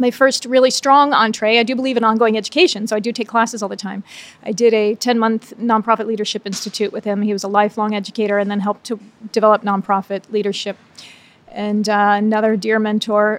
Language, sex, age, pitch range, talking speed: English, female, 30-49, 220-245 Hz, 200 wpm